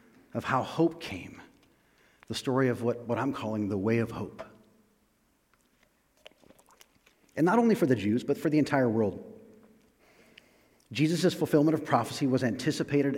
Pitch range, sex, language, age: 110-145 Hz, male, English, 40-59